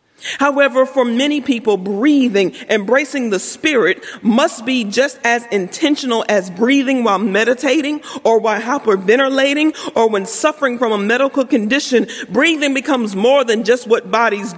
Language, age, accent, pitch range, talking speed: English, 40-59, American, 220-275 Hz, 140 wpm